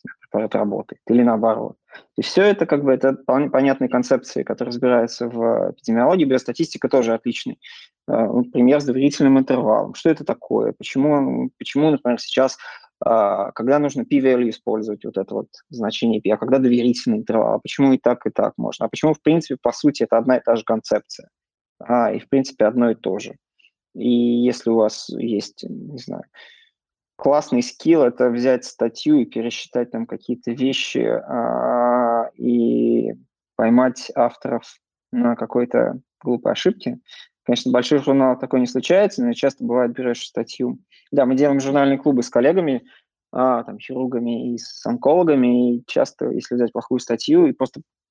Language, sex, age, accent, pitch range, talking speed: Russian, male, 20-39, native, 120-140 Hz, 160 wpm